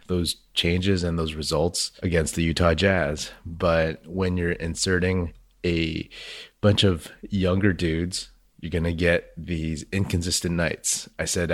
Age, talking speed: 30-49, 140 wpm